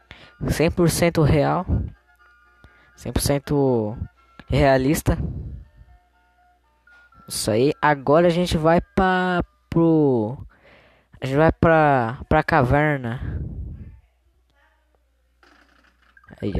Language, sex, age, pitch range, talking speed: Portuguese, female, 10-29, 100-160 Hz, 70 wpm